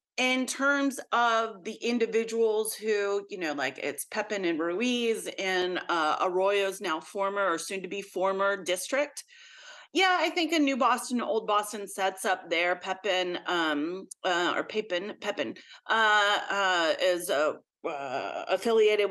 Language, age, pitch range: English, 30-49, 195-275 Hz